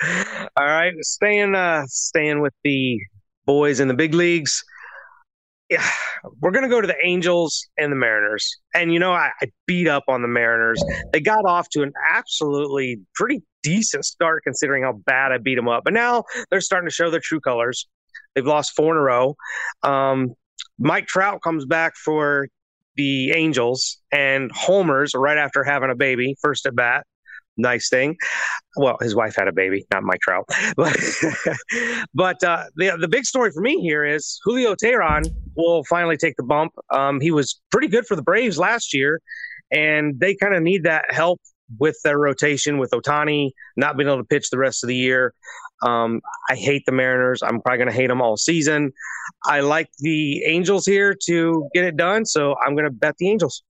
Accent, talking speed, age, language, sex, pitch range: American, 190 wpm, 30-49, English, male, 130-175 Hz